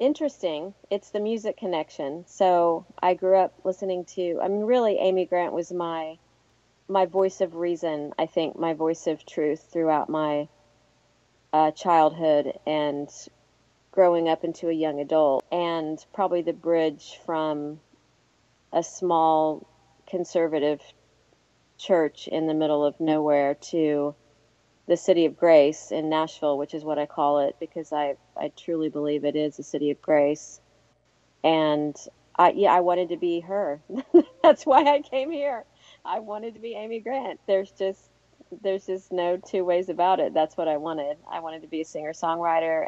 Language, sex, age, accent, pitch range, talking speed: English, female, 40-59, American, 150-180 Hz, 160 wpm